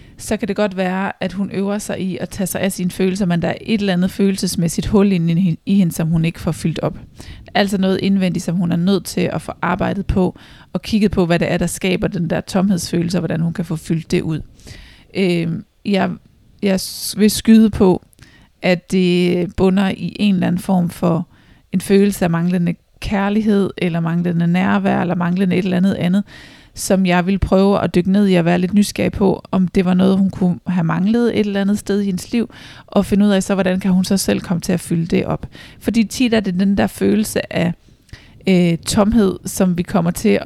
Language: Danish